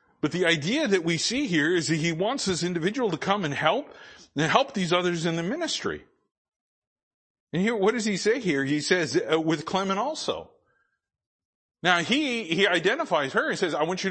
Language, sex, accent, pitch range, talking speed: English, male, American, 155-215 Hz, 195 wpm